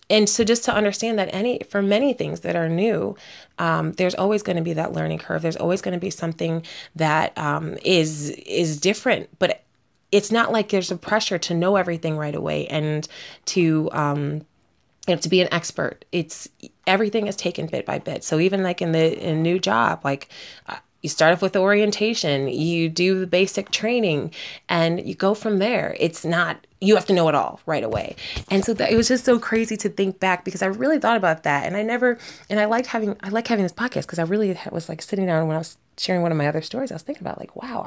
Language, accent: English, American